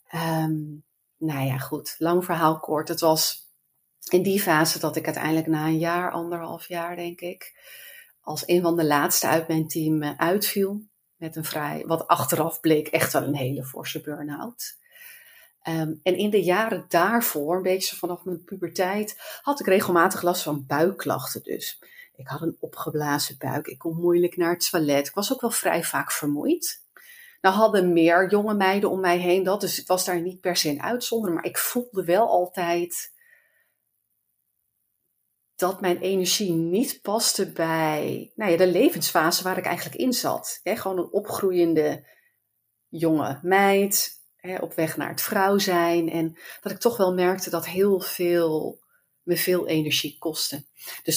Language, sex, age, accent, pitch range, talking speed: Dutch, female, 40-59, Dutch, 160-195 Hz, 165 wpm